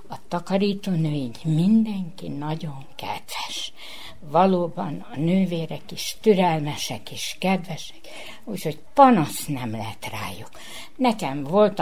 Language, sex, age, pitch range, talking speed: Hungarian, female, 60-79, 150-190 Hz, 105 wpm